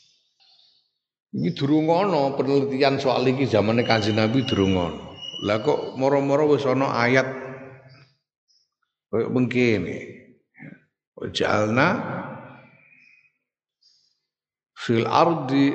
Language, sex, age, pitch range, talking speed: Indonesian, male, 50-69, 110-140 Hz, 70 wpm